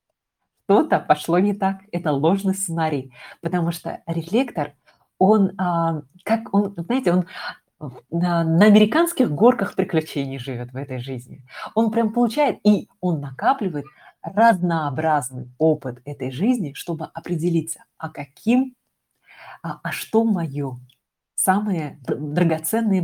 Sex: female